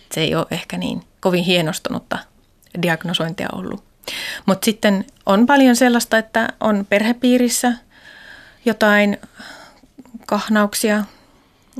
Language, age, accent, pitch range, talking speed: Finnish, 30-49, native, 180-225 Hz, 95 wpm